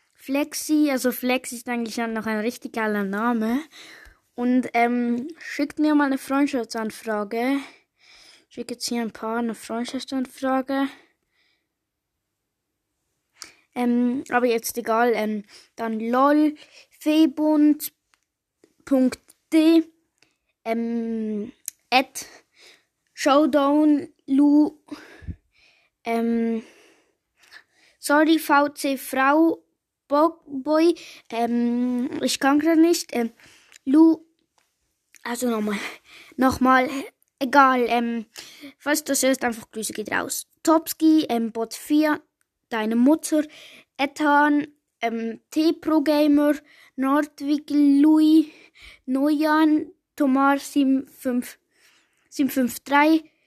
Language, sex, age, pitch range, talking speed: German, female, 20-39, 245-310 Hz, 85 wpm